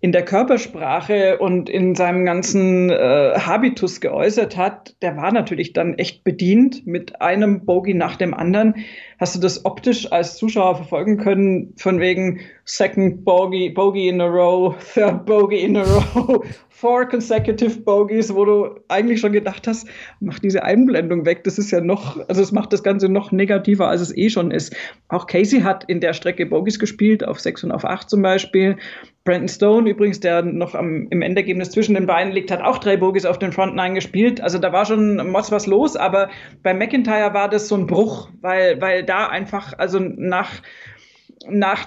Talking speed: 185 wpm